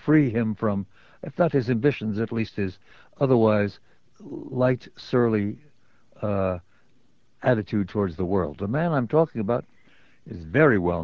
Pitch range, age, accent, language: 110-150 Hz, 60-79, American, English